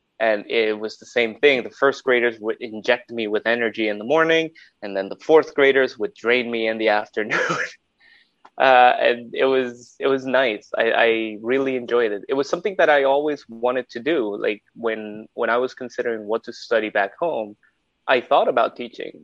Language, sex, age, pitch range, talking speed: English, male, 20-39, 105-125 Hz, 200 wpm